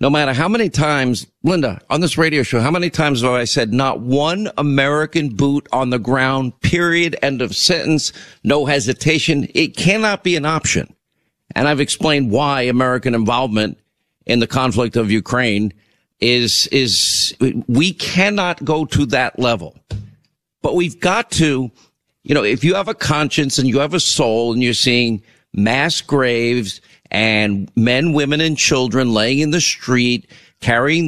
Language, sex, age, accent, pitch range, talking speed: English, male, 50-69, American, 115-150 Hz, 160 wpm